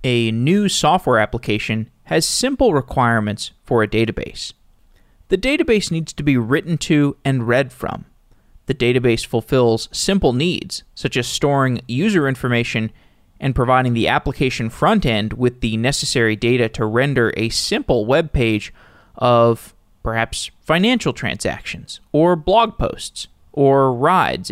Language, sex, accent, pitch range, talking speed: English, male, American, 115-150 Hz, 135 wpm